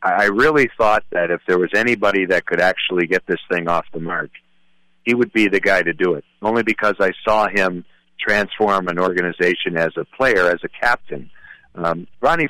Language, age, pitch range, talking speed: English, 50-69, 85-105 Hz, 195 wpm